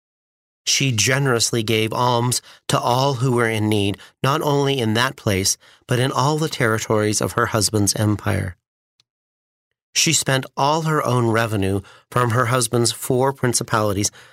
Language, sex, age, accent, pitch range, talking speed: English, male, 40-59, American, 100-125 Hz, 145 wpm